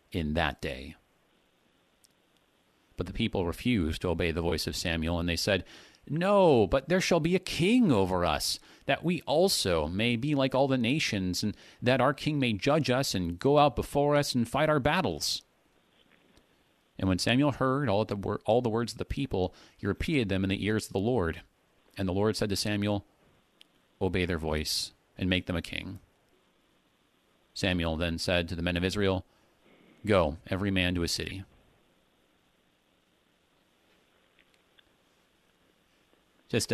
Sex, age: male, 40-59